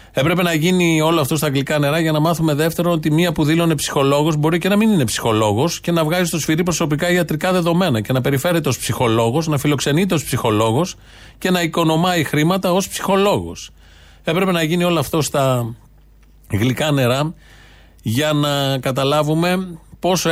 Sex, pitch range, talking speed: male, 125-165 Hz, 170 wpm